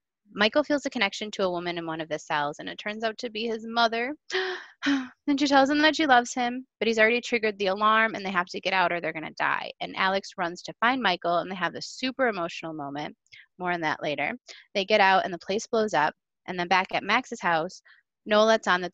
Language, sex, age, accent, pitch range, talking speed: English, female, 20-39, American, 170-220 Hz, 255 wpm